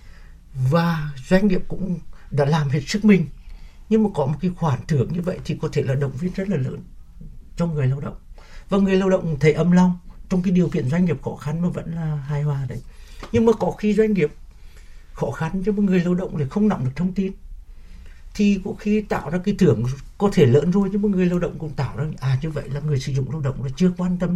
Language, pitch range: Vietnamese, 130-175 Hz